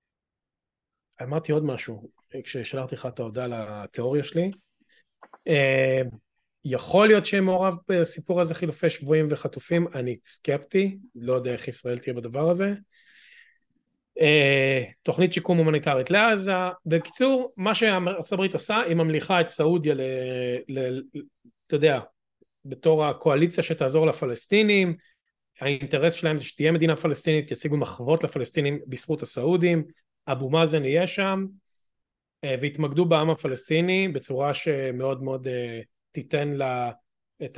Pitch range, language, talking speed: 130-170 Hz, Hebrew, 110 wpm